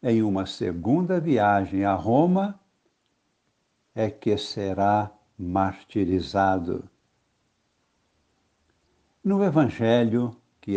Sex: male